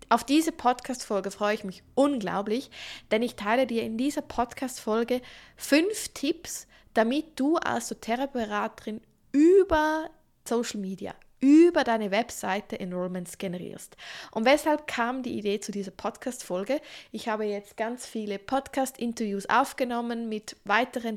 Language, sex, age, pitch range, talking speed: German, female, 20-39, 205-255 Hz, 130 wpm